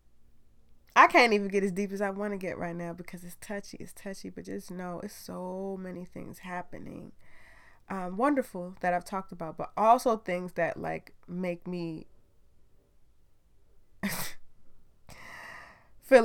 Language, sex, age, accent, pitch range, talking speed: English, female, 20-39, American, 180-225 Hz, 150 wpm